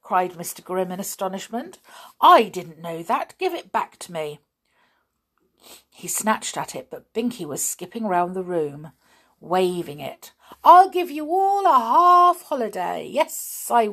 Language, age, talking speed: English, 50-69, 155 wpm